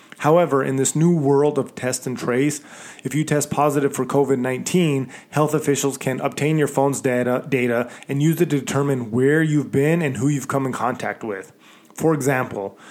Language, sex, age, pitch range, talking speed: English, male, 20-39, 130-150 Hz, 185 wpm